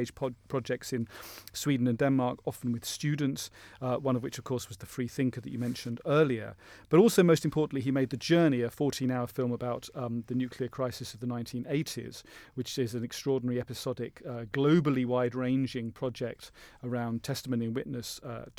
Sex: male